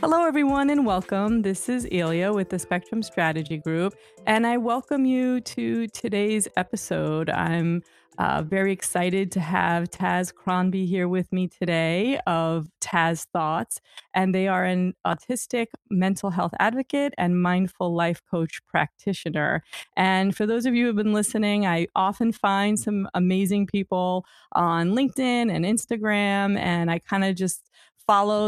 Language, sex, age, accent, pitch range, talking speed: English, female, 30-49, American, 170-205 Hz, 150 wpm